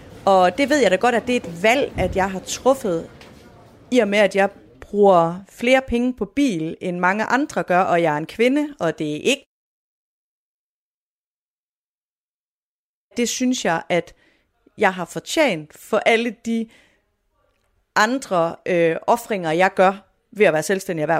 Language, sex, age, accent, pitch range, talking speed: Danish, female, 30-49, native, 180-245 Hz, 160 wpm